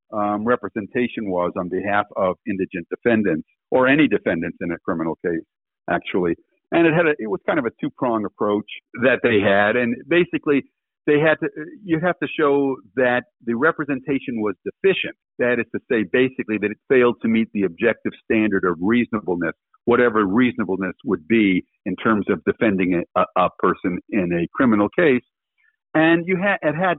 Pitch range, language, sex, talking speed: 105-145 Hz, English, male, 180 wpm